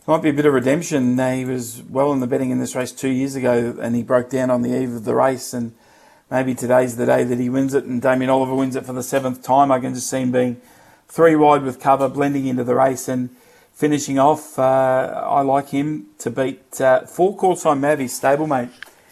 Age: 40-59